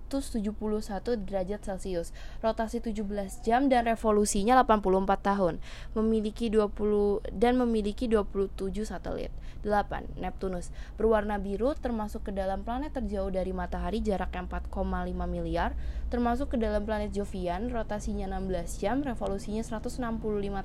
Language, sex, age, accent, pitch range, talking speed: Indonesian, female, 20-39, native, 180-220 Hz, 115 wpm